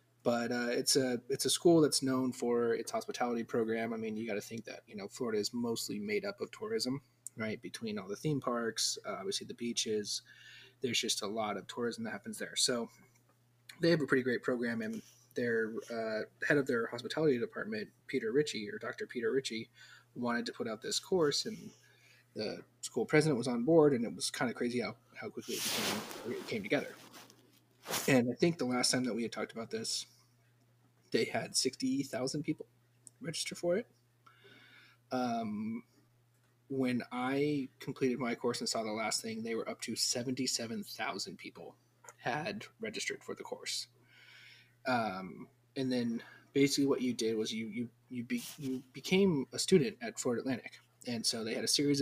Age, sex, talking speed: 30-49, male, 185 wpm